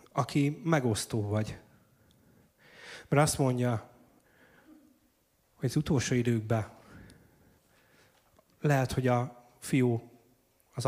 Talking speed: 85 wpm